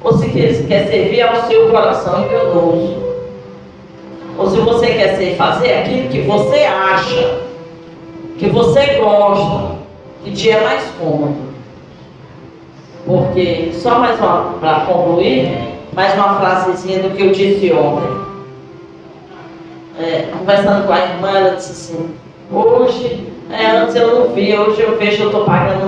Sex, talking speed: female, 140 wpm